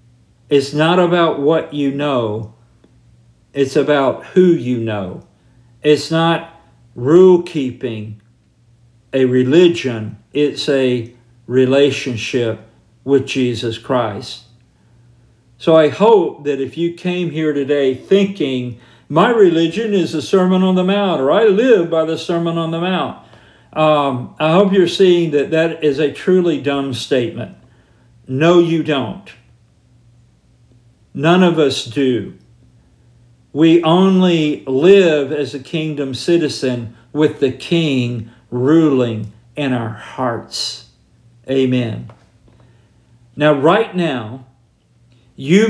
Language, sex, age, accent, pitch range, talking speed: English, male, 50-69, American, 120-165 Hz, 115 wpm